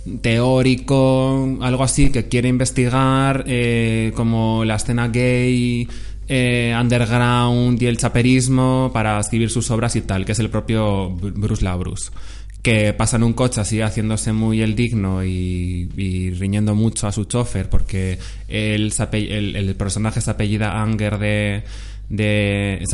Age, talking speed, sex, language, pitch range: 20-39, 145 wpm, male, Spanish, 105-125 Hz